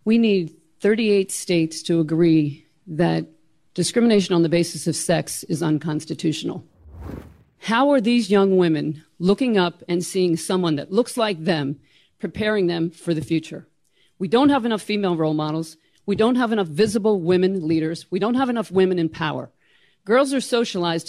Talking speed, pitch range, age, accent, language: 165 wpm, 160-210 Hz, 40-59, American, English